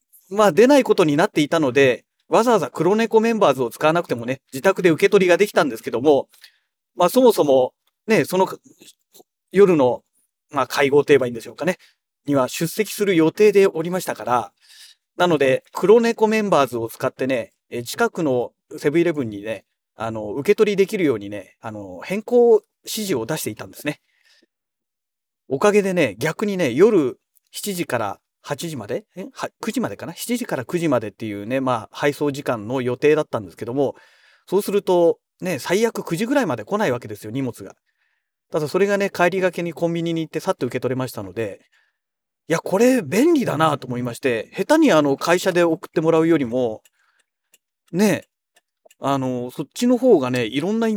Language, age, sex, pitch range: Japanese, 40-59, male, 130-210 Hz